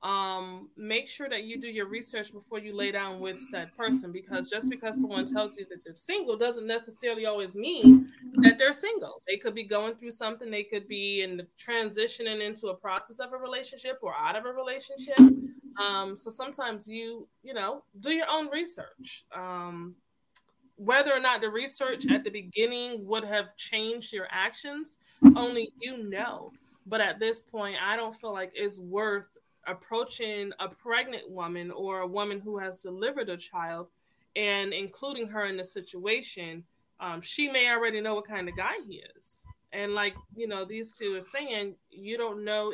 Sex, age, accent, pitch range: female, 20-39, American, 195-240 Hz